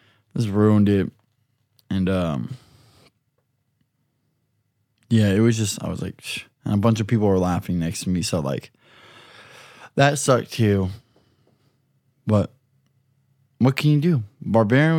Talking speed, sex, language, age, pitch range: 130 wpm, male, English, 20-39, 105-125 Hz